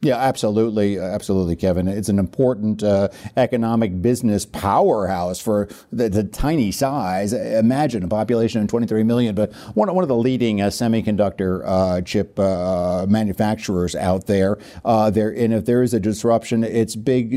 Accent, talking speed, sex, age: American, 155 wpm, male, 60-79